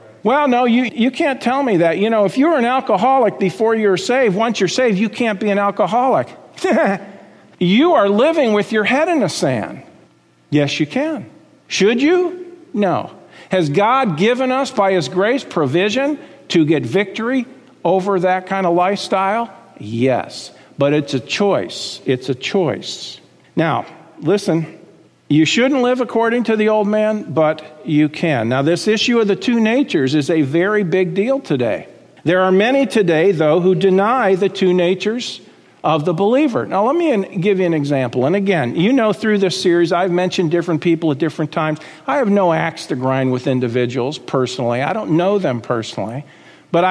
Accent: American